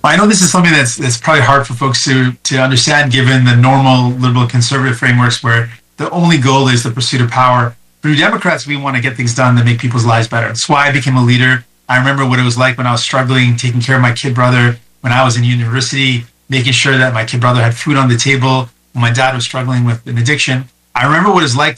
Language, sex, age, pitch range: English, male, 30-49, 120-135 Hz